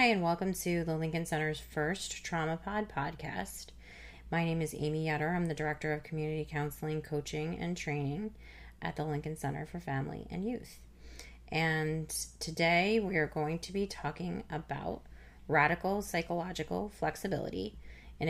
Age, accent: 30-49, American